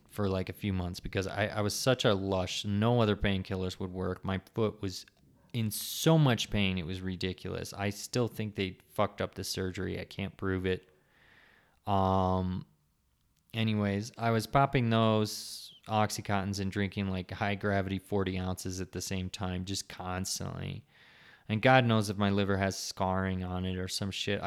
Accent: American